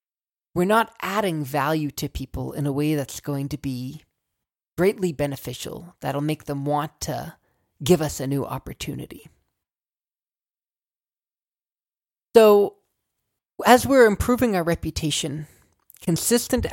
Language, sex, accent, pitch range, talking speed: English, male, American, 145-195 Hz, 115 wpm